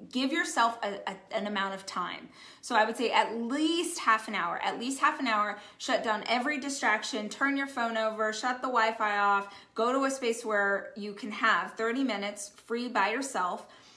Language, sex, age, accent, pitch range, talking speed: English, female, 20-39, American, 210-260 Hz, 200 wpm